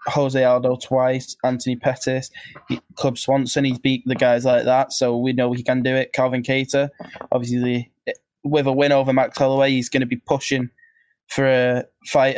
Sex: male